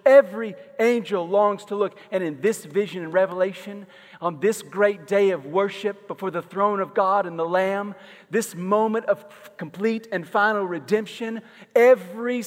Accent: American